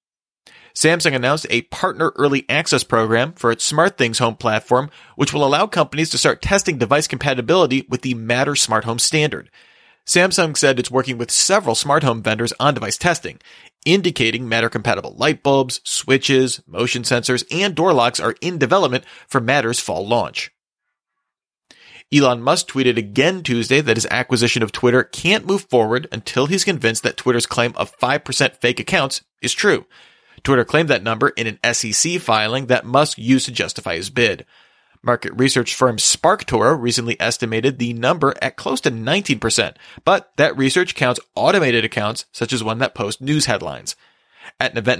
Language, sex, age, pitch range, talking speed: English, male, 30-49, 120-150 Hz, 165 wpm